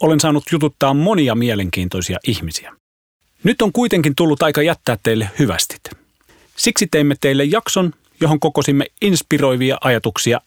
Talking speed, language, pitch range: 125 wpm, Finnish, 110-160 Hz